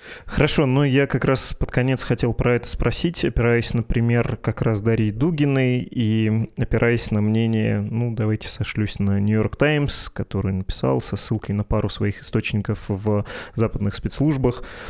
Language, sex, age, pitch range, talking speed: Russian, male, 20-39, 105-125 Hz, 155 wpm